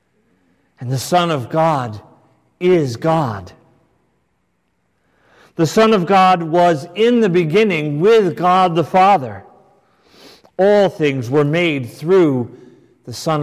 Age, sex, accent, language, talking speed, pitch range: 40-59, male, American, English, 115 wpm, 115-170 Hz